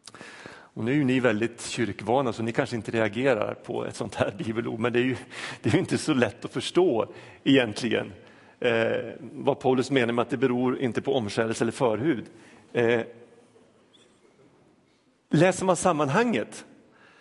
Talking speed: 160 wpm